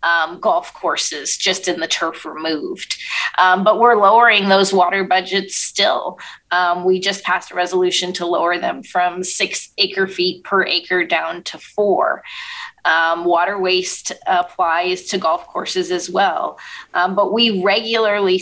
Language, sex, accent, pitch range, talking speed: English, female, American, 180-225 Hz, 155 wpm